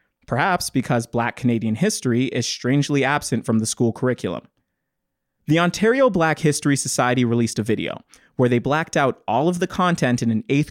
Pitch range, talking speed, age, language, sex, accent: 120-155 Hz, 175 wpm, 20-39, English, male, American